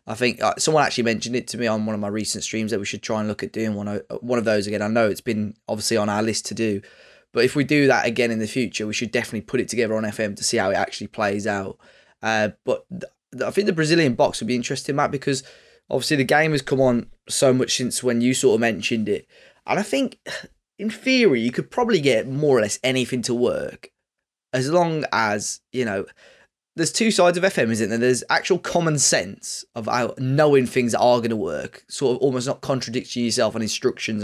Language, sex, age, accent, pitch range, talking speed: English, male, 20-39, British, 110-130 Hz, 240 wpm